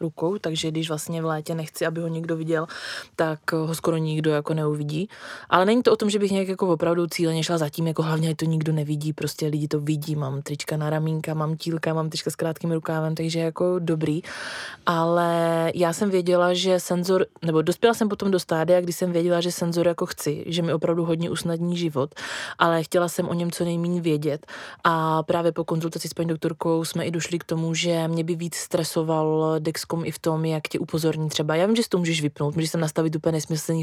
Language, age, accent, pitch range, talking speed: Czech, 20-39, native, 155-170 Hz, 220 wpm